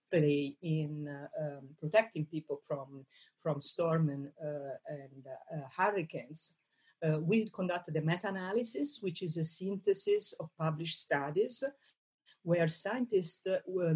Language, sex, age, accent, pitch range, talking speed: English, female, 50-69, Italian, 155-190 Hz, 120 wpm